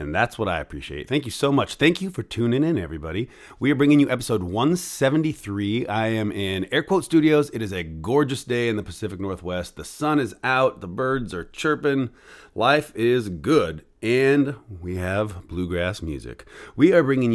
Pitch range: 100-140 Hz